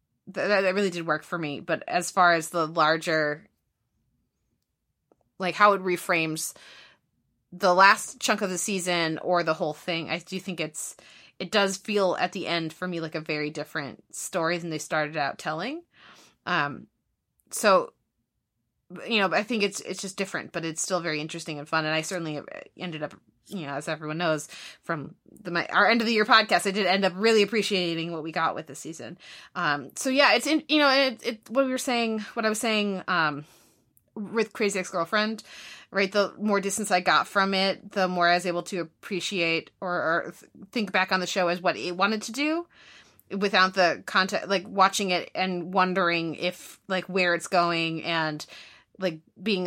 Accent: American